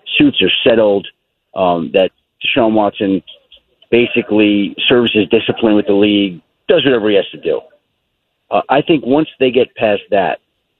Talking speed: 155 wpm